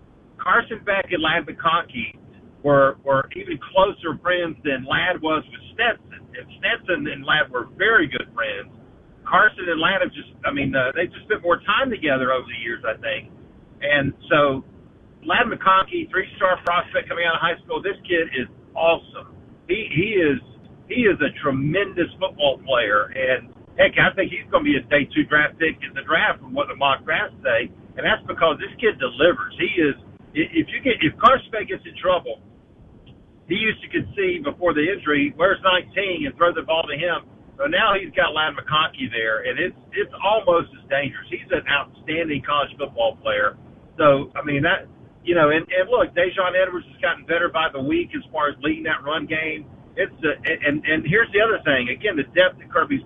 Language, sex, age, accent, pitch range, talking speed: English, male, 50-69, American, 145-190 Hz, 200 wpm